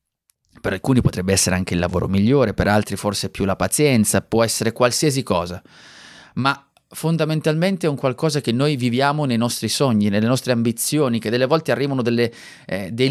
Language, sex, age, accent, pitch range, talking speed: Italian, male, 30-49, native, 105-140 Hz, 175 wpm